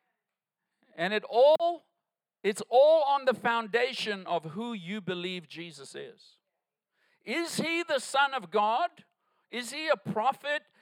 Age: 50-69